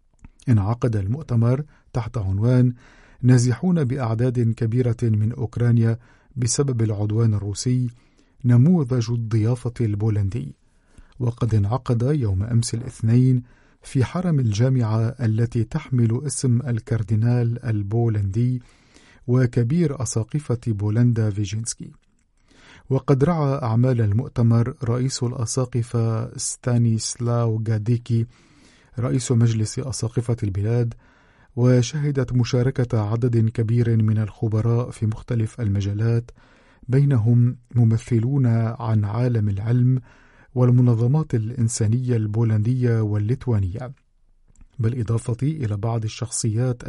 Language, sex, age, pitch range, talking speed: Arabic, male, 50-69, 115-125 Hz, 85 wpm